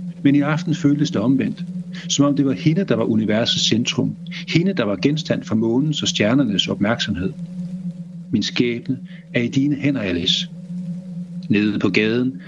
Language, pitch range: Danish, 130-175 Hz